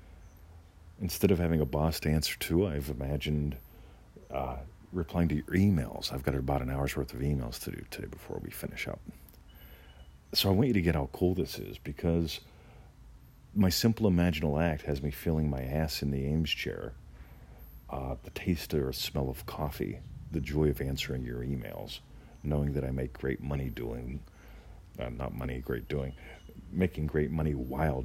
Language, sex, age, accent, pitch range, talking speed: English, male, 50-69, American, 65-85 Hz, 180 wpm